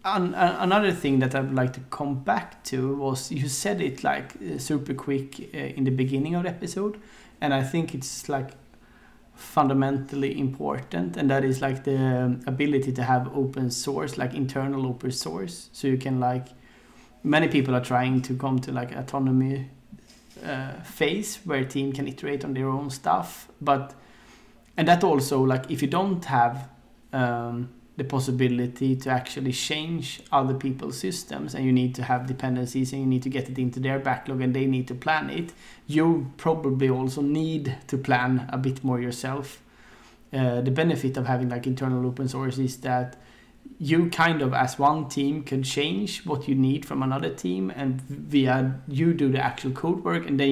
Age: 30-49